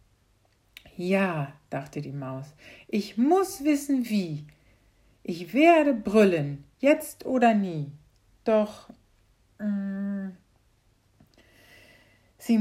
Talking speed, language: 80 wpm, German